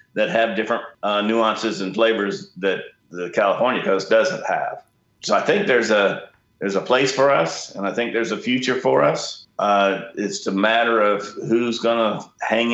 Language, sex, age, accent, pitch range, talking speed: English, male, 50-69, American, 95-115 Hz, 190 wpm